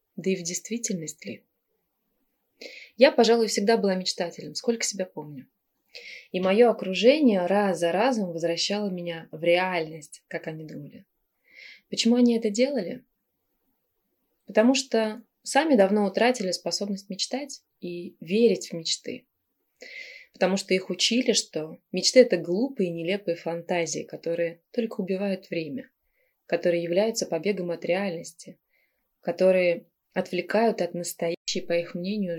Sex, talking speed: female, 125 wpm